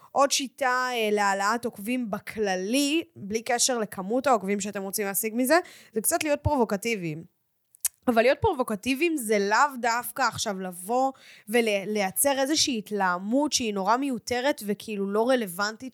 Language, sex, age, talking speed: Hebrew, female, 10-29, 130 wpm